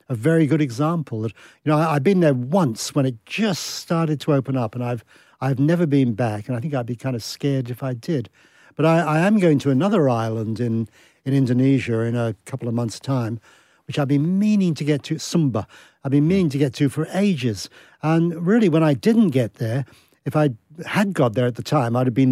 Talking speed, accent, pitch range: 235 wpm, British, 120-155 Hz